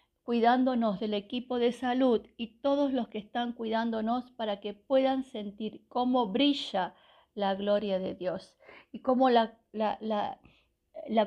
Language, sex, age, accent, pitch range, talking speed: Spanish, female, 50-69, American, 205-245 Hz, 135 wpm